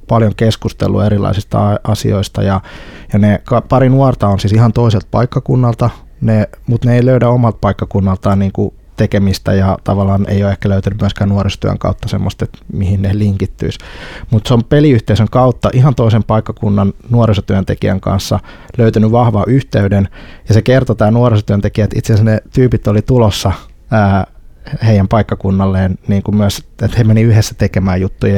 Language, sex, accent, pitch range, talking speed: Finnish, male, native, 95-110 Hz, 150 wpm